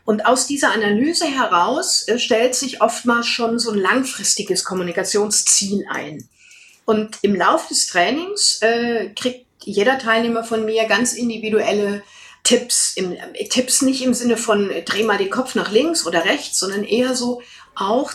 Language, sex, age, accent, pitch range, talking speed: German, female, 50-69, German, 195-245 Hz, 160 wpm